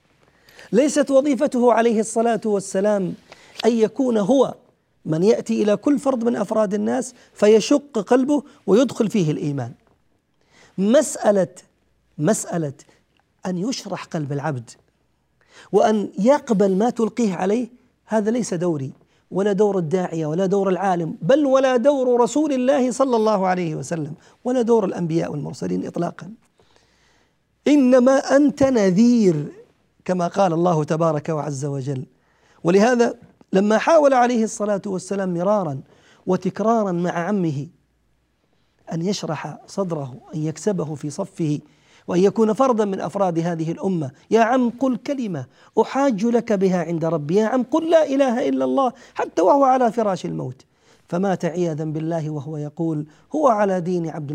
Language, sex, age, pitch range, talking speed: Arabic, male, 40-59, 160-235 Hz, 130 wpm